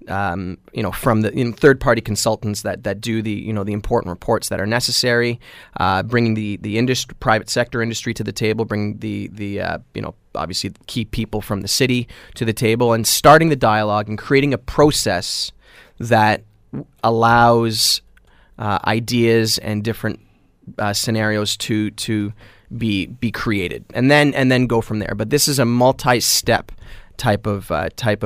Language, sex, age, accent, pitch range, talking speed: English, male, 30-49, American, 105-120 Hz, 180 wpm